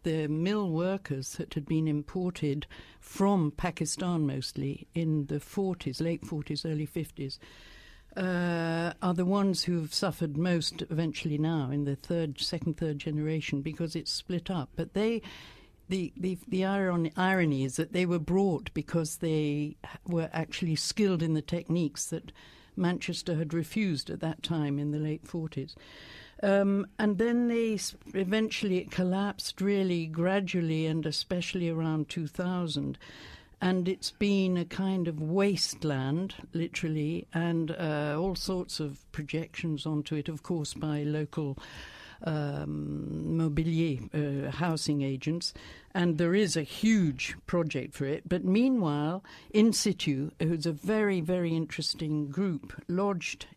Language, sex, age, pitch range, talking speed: English, female, 60-79, 150-185 Hz, 140 wpm